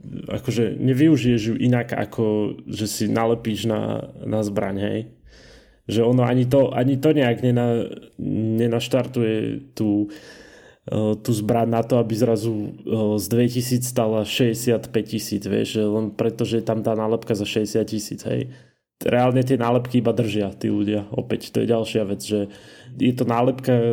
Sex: male